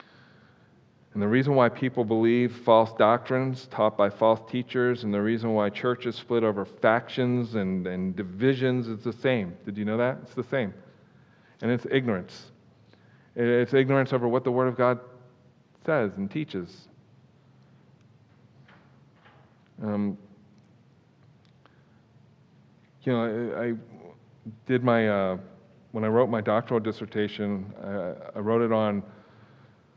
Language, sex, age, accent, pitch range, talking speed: English, male, 40-59, American, 105-125 Hz, 130 wpm